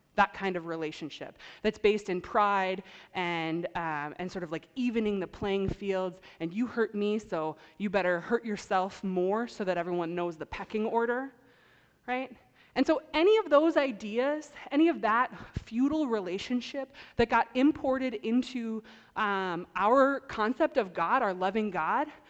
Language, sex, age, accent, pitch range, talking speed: English, female, 20-39, American, 185-250 Hz, 160 wpm